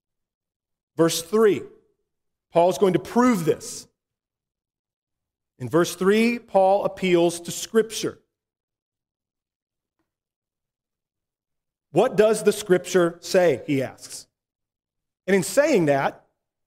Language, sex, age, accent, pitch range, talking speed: English, male, 40-59, American, 155-230 Hz, 95 wpm